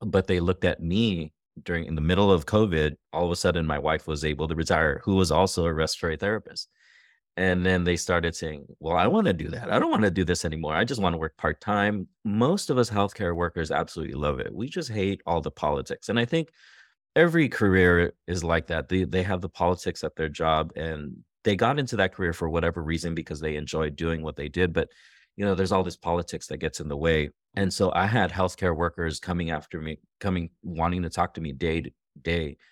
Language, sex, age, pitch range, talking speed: English, male, 30-49, 85-100 Hz, 235 wpm